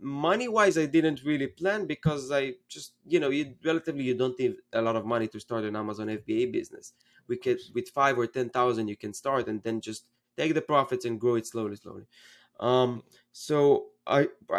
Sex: male